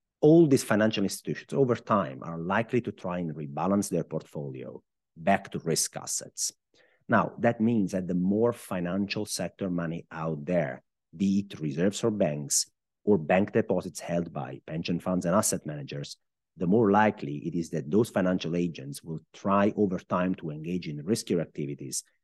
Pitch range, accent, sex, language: 80-100 Hz, Italian, male, English